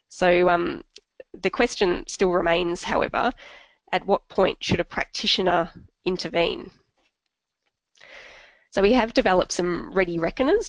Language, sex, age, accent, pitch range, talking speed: English, female, 20-39, Australian, 170-220 Hz, 120 wpm